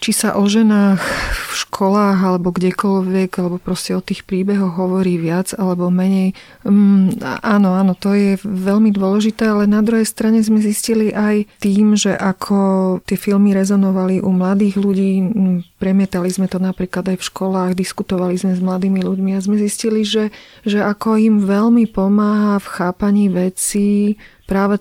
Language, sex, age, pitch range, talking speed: Slovak, female, 40-59, 185-205 Hz, 155 wpm